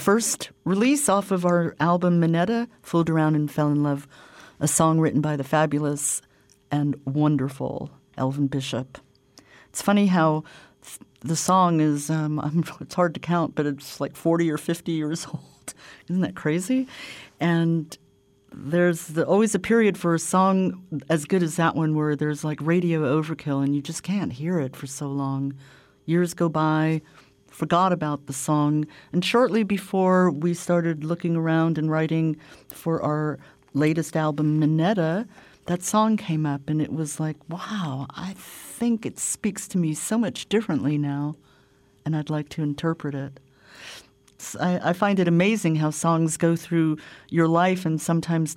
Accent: American